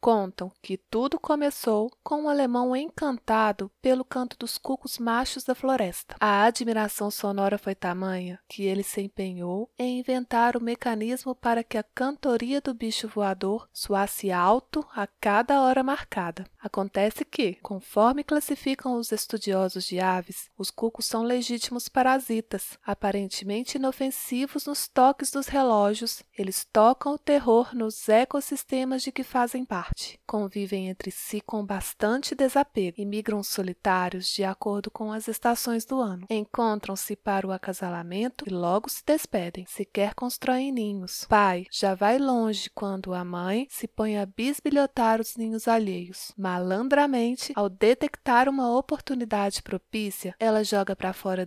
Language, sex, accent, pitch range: Portuguese, female, Brazilian, 200-255 Hz